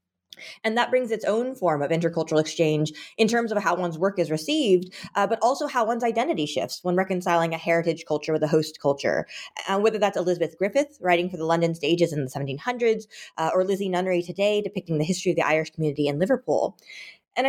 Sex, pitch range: female, 160-205 Hz